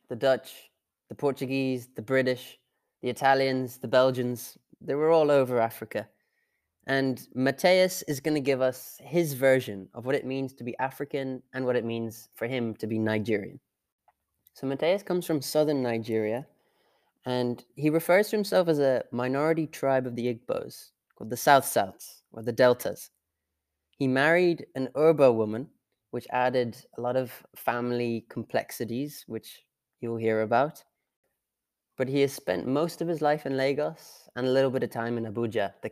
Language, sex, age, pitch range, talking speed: English, male, 20-39, 115-140 Hz, 165 wpm